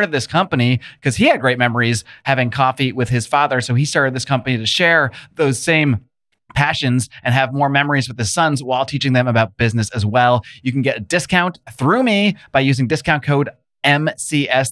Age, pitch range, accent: 30-49, 120-160 Hz, American